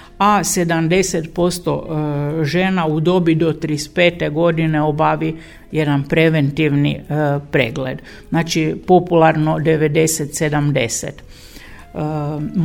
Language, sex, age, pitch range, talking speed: Croatian, female, 50-69, 150-180 Hz, 70 wpm